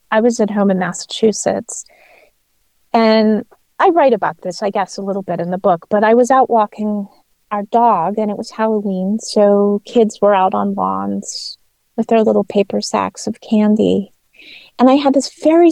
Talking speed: 185 wpm